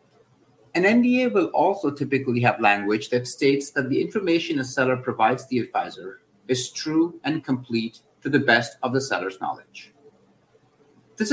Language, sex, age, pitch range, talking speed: English, male, 50-69, 125-170 Hz, 155 wpm